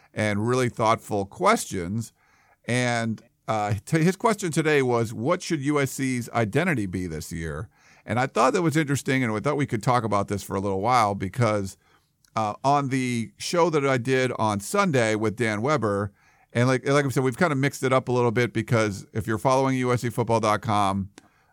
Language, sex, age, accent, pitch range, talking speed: English, male, 50-69, American, 105-130 Hz, 185 wpm